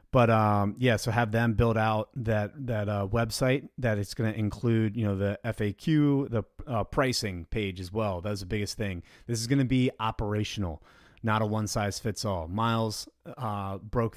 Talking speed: 180 wpm